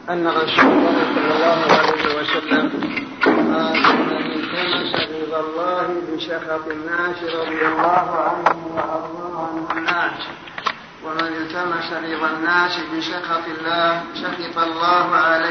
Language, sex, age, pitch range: Arabic, male, 50-69, 160-180 Hz